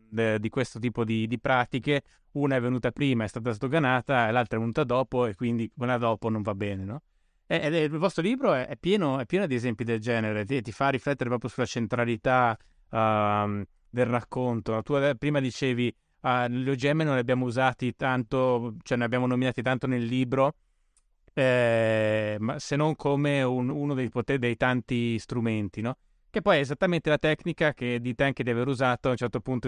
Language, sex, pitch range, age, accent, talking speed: Italian, male, 115-135 Hz, 20-39, native, 190 wpm